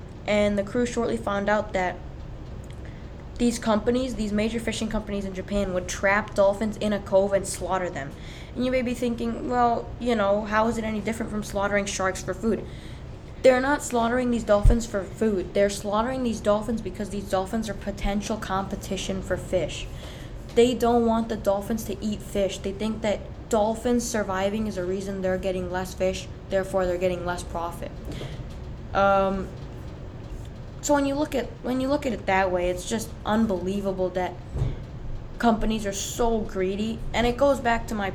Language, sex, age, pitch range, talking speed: English, female, 10-29, 185-220 Hz, 180 wpm